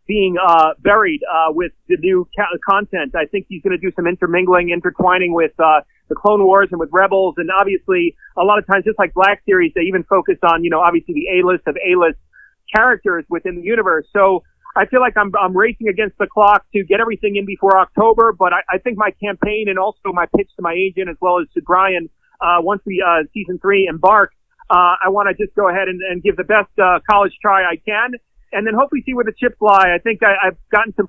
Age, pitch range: 30-49, 190-225 Hz